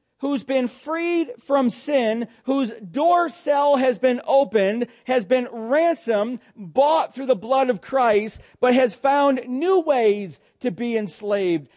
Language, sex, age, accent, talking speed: English, male, 40-59, American, 145 wpm